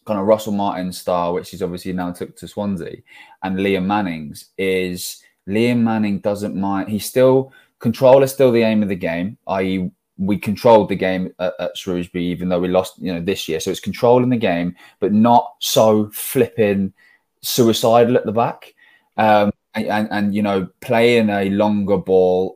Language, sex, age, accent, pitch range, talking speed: English, male, 20-39, British, 90-115 Hz, 185 wpm